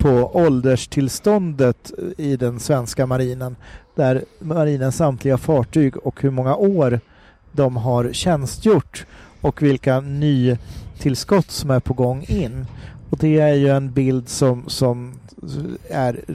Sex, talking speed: male, 130 wpm